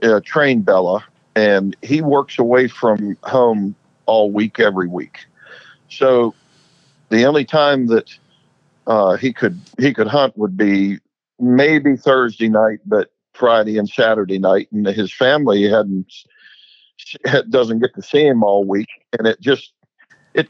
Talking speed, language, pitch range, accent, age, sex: 145 wpm, English, 105-130 Hz, American, 50-69, male